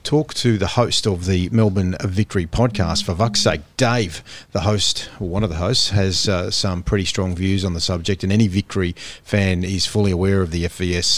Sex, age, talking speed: male, 40-59, 210 wpm